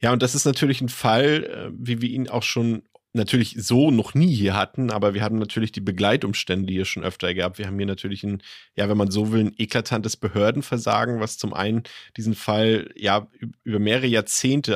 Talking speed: 205 wpm